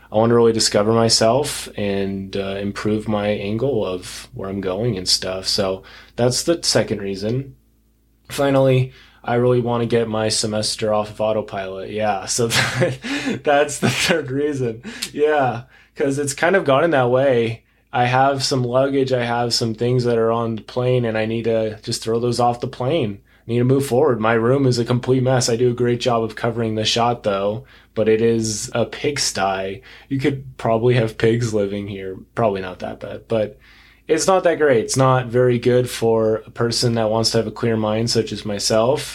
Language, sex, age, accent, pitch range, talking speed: English, male, 20-39, American, 110-130 Hz, 200 wpm